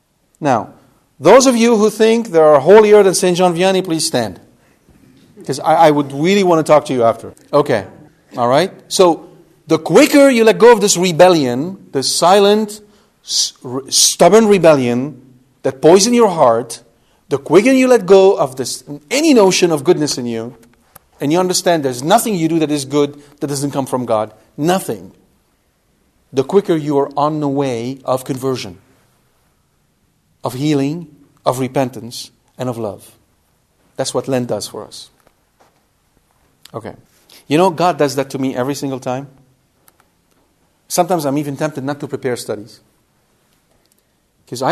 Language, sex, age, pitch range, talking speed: English, male, 40-59, 125-165 Hz, 160 wpm